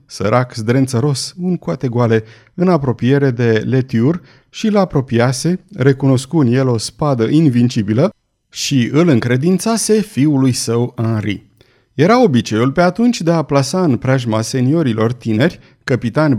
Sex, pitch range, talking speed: male, 115-155 Hz, 130 wpm